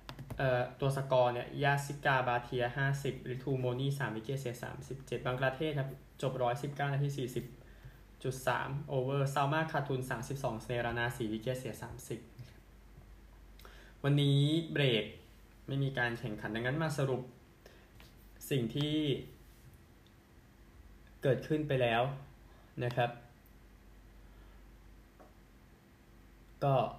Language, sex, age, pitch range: Thai, male, 20-39, 115-135 Hz